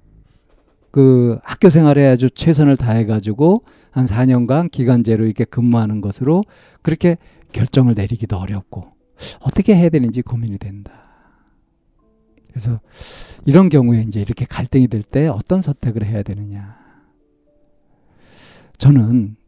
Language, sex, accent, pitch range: Korean, male, native, 105-145 Hz